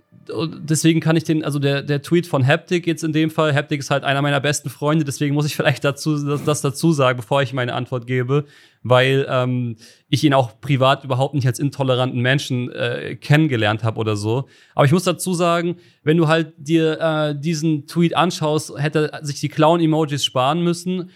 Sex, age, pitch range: male, 30-49, 135-160 Hz